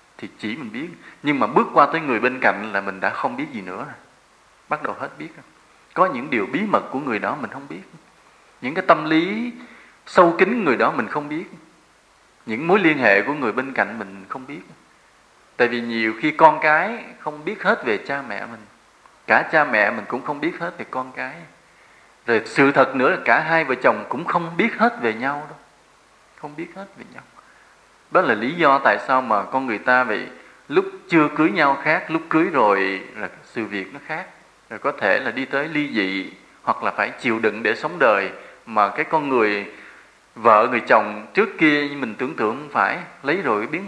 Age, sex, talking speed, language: 20-39, male, 215 wpm, English